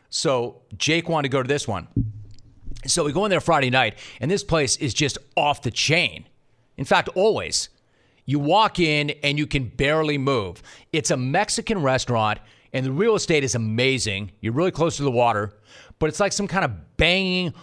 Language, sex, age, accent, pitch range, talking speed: English, male, 40-59, American, 120-165 Hz, 195 wpm